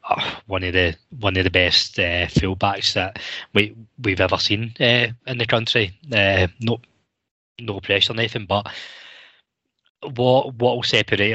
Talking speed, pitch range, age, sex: 150 wpm, 100-115 Hz, 20-39, male